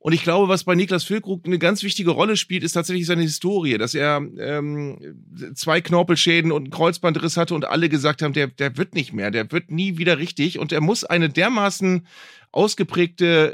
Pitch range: 155-185 Hz